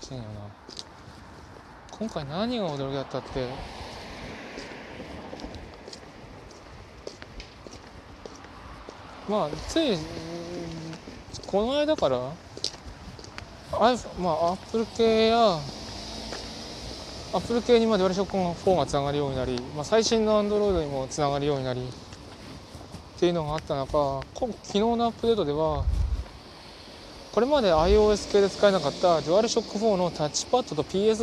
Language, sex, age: Japanese, male, 20-39